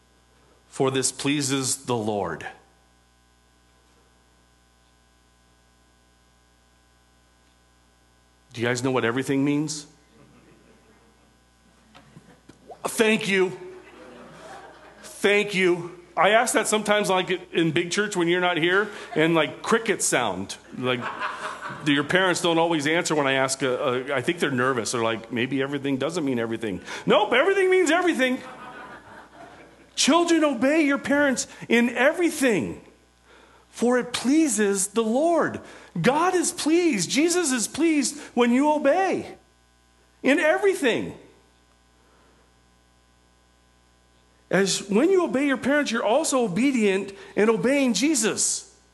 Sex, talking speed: male, 110 wpm